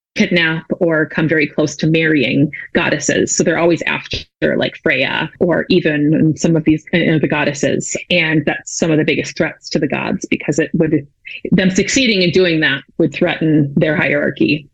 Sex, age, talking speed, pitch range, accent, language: female, 30-49, 185 wpm, 155-185 Hz, American, English